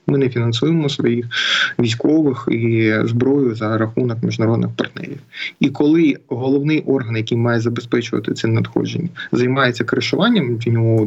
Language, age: Ukrainian, 20-39